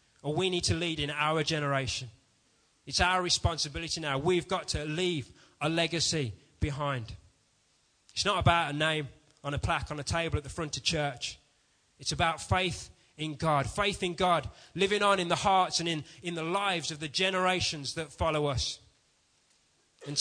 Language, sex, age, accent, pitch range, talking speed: English, male, 20-39, British, 135-170 Hz, 180 wpm